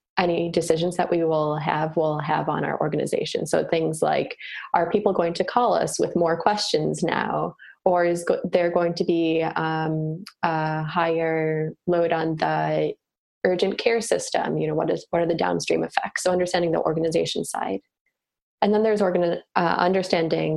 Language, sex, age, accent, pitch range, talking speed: English, female, 20-39, American, 160-180 Hz, 175 wpm